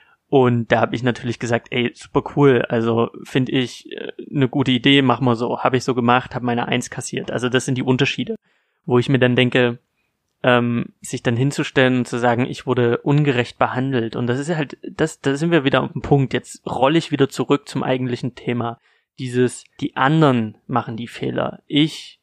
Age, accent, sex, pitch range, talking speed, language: 30-49, German, male, 120-135 Hz, 205 wpm, German